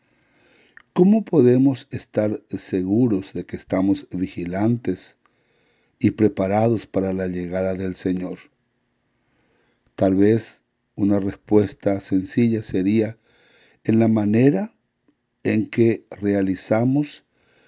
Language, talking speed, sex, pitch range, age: English, 90 wpm, male, 95-115 Hz, 60-79